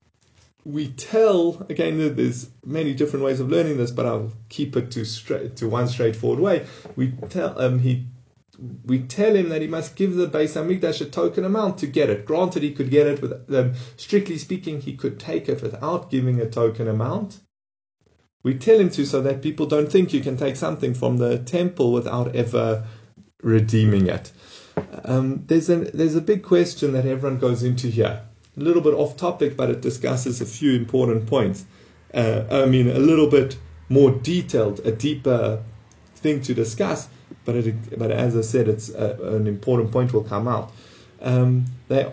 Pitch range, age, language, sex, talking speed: 115-155 Hz, 30-49, English, male, 185 wpm